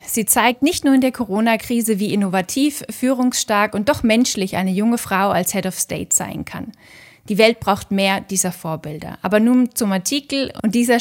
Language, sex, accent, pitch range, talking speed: English, female, German, 185-230 Hz, 185 wpm